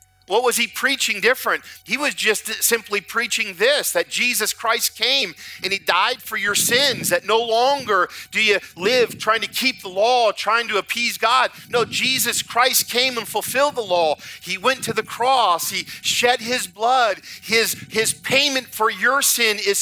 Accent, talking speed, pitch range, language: American, 180 wpm, 200-255 Hz, English